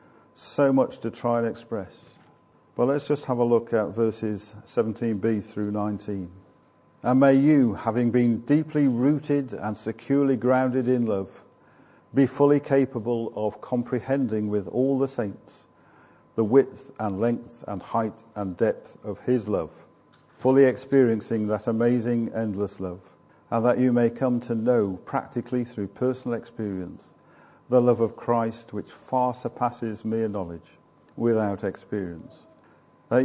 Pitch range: 110-130 Hz